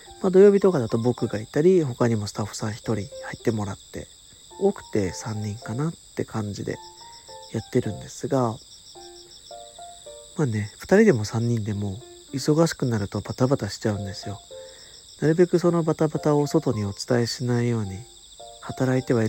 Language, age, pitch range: Japanese, 40-59, 110-165 Hz